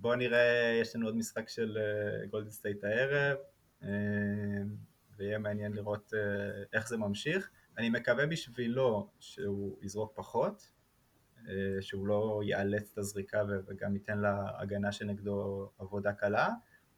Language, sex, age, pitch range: English, male, 20-39, 100-125 Hz